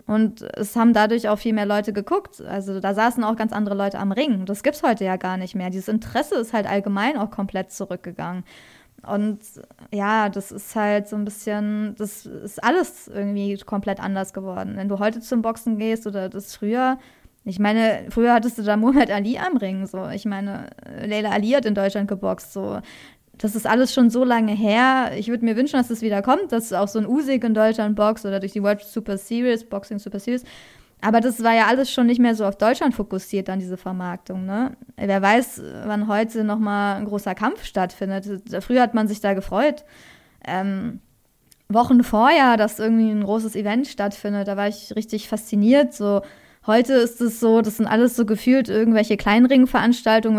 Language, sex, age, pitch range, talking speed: German, female, 20-39, 200-235 Hz, 200 wpm